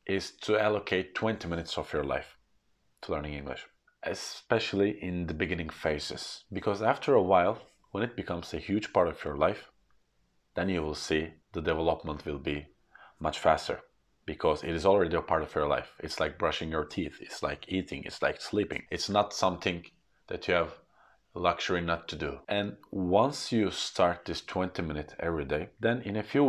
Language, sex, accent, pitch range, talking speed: English, male, Norwegian, 75-90 Hz, 185 wpm